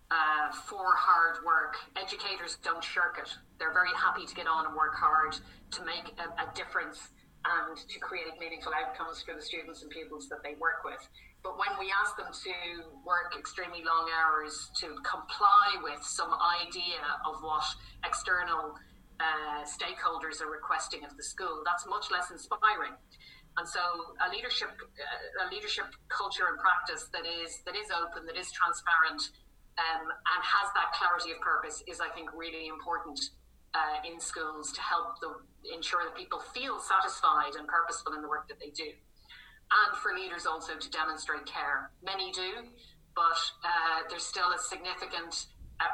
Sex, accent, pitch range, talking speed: female, Irish, 155-180 Hz, 170 wpm